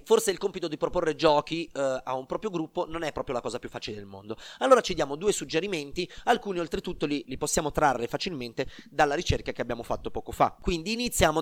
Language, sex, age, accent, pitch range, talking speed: Italian, male, 30-49, native, 130-180 Hz, 210 wpm